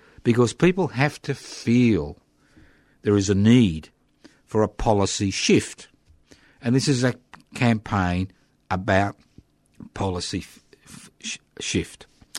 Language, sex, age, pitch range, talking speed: English, male, 50-69, 80-105 Hz, 110 wpm